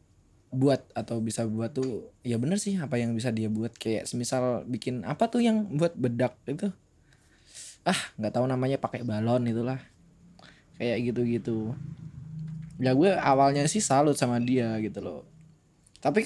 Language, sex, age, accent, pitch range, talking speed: Indonesian, male, 20-39, native, 110-160 Hz, 155 wpm